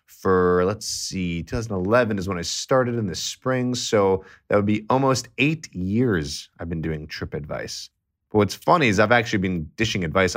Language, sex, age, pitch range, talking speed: English, male, 30-49, 85-110 Hz, 185 wpm